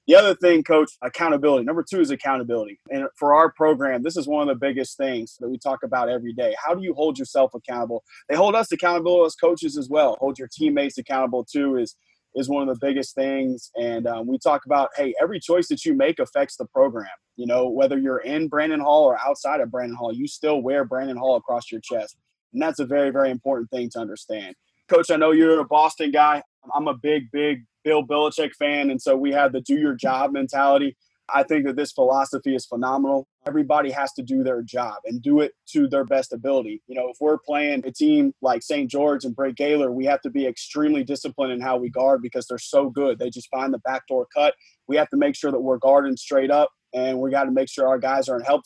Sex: male